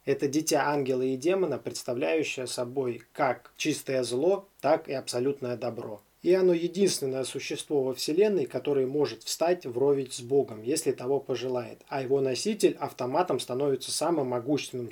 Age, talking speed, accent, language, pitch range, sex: 20-39, 145 wpm, native, Russian, 130-165 Hz, male